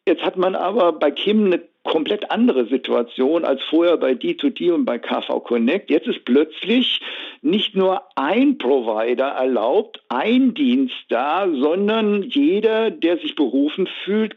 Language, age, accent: German, 60-79, German